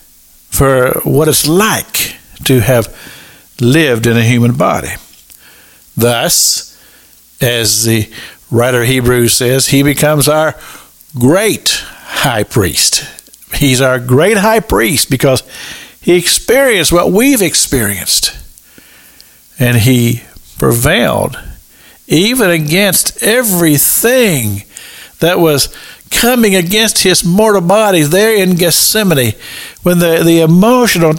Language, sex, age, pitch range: English, male, 60-79, 115-180 Hz